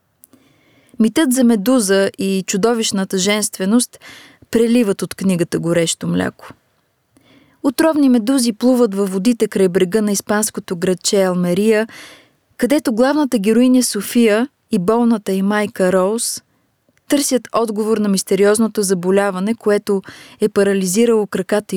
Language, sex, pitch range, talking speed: Bulgarian, female, 190-240 Hz, 110 wpm